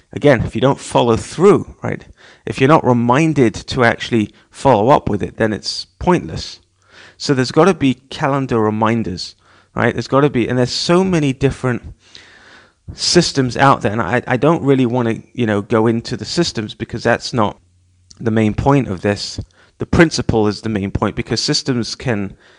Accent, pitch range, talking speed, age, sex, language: British, 110-135 Hz, 185 wpm, 30-49, male, English